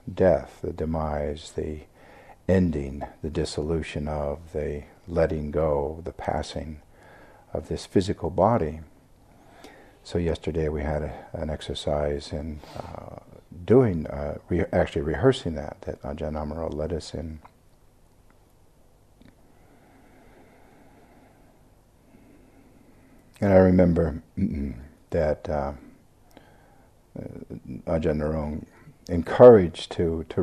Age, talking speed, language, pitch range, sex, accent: 50-69, 95 wpm, English, 75-85 Hz, male, American